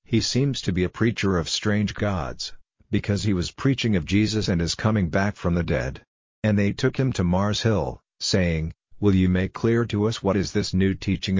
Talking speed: 215 wpm